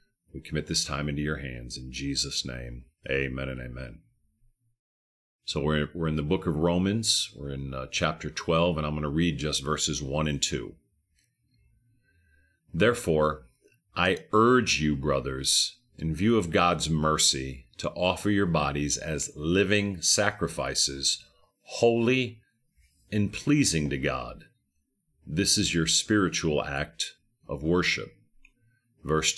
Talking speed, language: 135 wpm, English